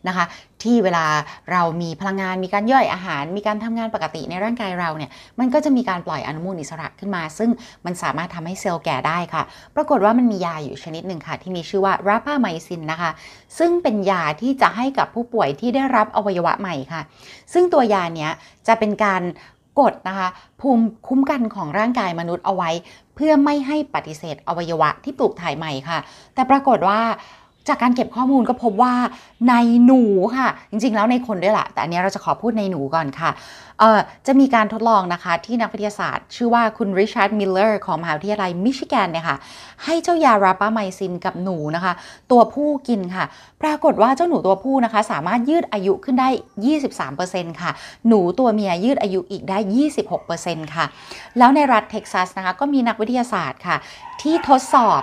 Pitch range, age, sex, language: 175-245 Hz, 30-49, female, Thai